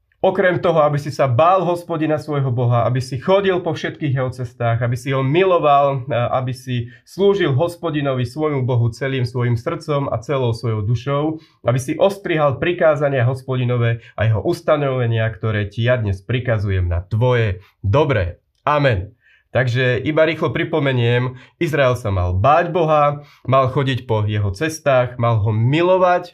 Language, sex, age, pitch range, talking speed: Slovak, male, 30-49, 110-145 Hz, 155 wpm